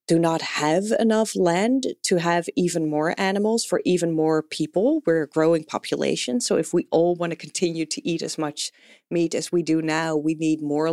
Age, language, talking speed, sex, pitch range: 30-49, English, 205 wpm, female, 155-205 Hz